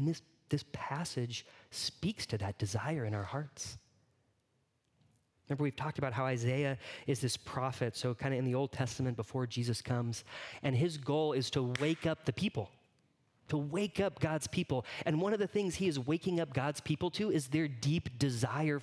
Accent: American